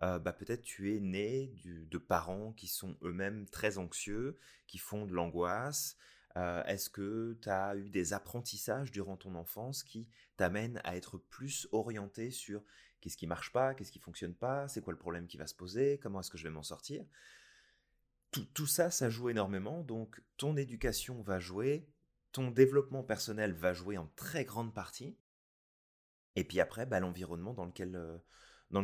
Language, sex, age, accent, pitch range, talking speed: French, male, 30-49, French, 90-115 Hz, 185 wpm